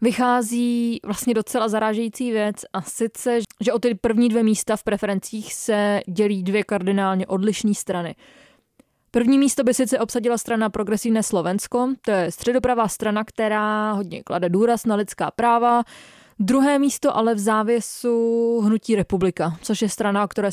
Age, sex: 20-39, female